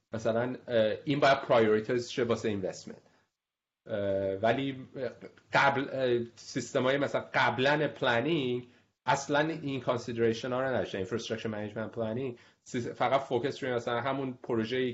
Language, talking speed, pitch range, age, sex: Persian, 105 wpm, 110-130 Hz, 30-49, male